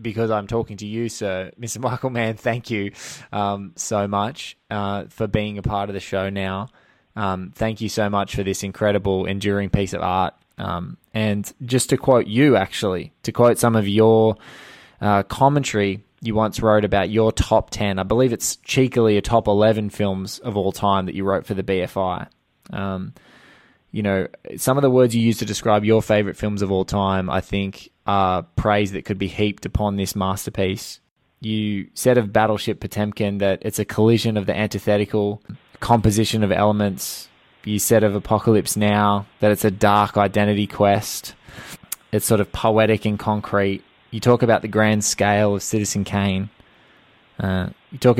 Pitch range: 100-110 Hz